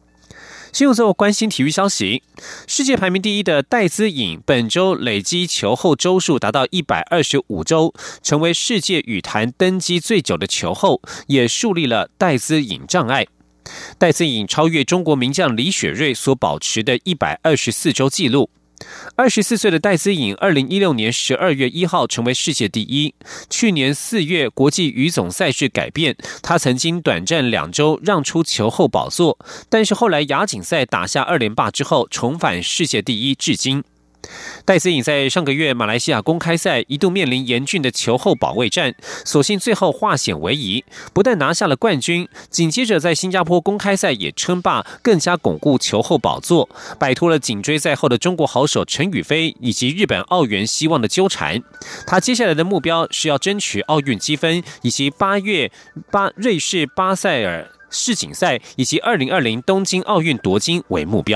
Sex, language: male, German